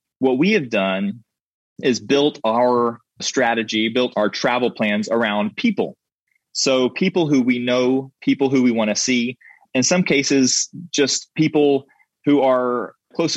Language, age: English, 20-39